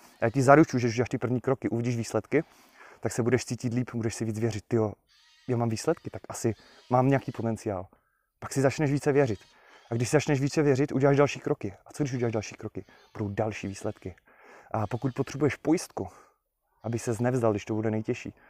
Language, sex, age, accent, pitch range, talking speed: Czech, male, 20-39, native, 110-130 Hz, 210 wpm